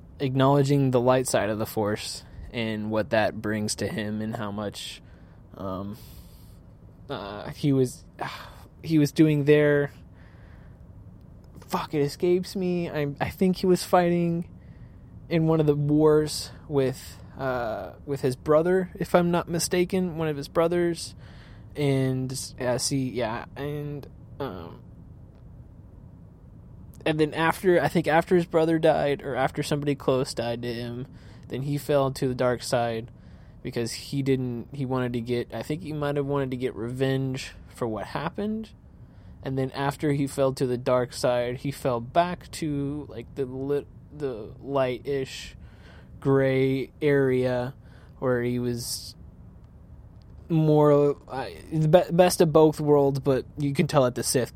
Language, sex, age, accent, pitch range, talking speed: English, male, 20-39, American, 120-150 Hz, 155 wpm